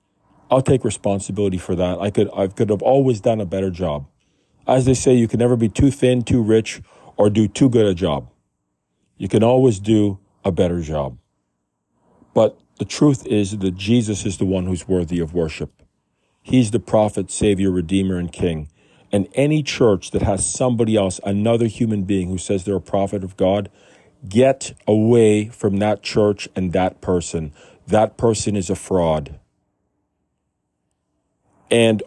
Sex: male